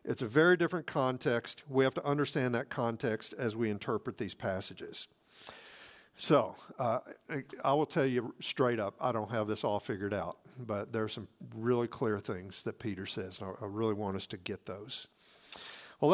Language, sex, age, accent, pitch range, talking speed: English, male, 50-69, American, 115-145 Hz, 185 wpm